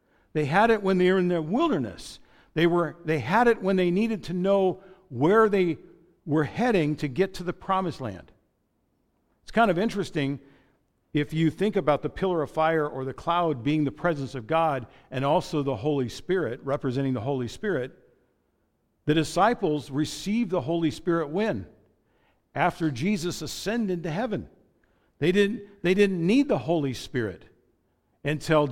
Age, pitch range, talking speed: 50-69, 140-185 Hz, 165 wpm